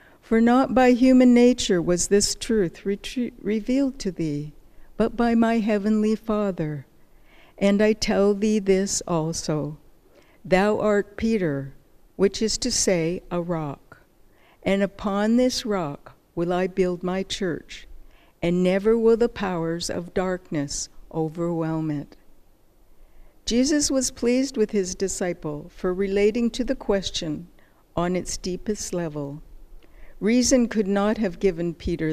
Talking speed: 130 wpm